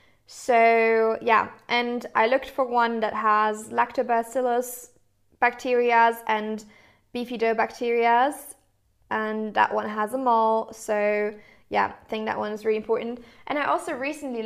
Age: 20-39